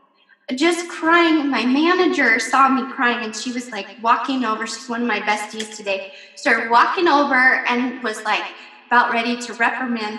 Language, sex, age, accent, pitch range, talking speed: English, female, 10-29, American, 250-340 Hz, 170 wpm